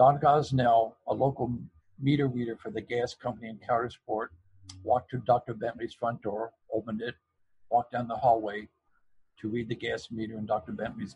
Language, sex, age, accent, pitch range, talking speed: English, male, 60-79, American, 110-130 Hz, 170 wpm